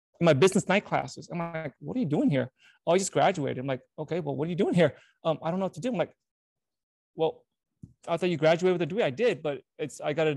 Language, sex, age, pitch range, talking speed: English, male, 20-39, 150-195 Hz, 280 wpm